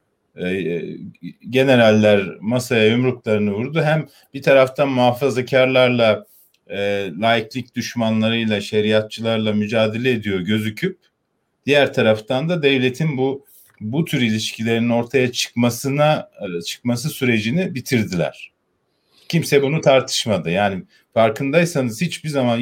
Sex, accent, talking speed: male, native, 95 wpm